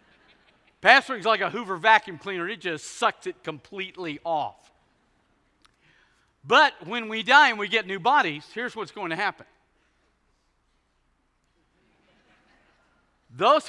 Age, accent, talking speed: 50-69, American, 125 wpm